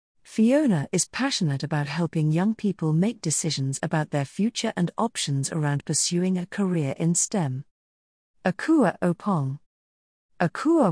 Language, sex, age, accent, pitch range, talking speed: English, female, 40-59, British, 150-210 Hz, 125 wpm